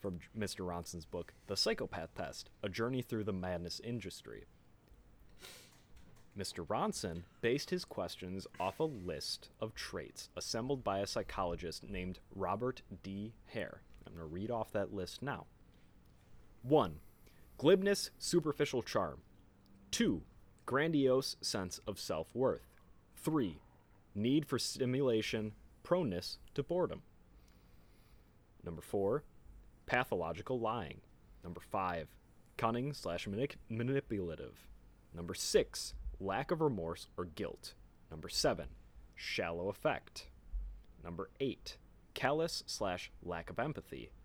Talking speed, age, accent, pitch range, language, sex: 110 wpm, 30-49, American, 85-125 Hz, English, male